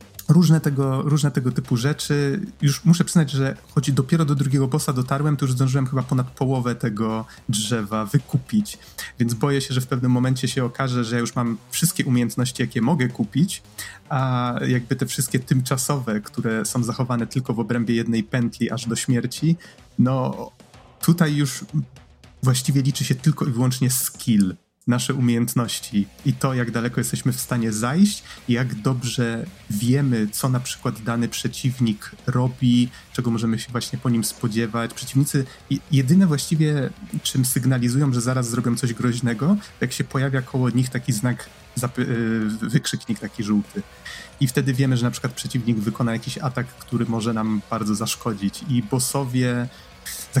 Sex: male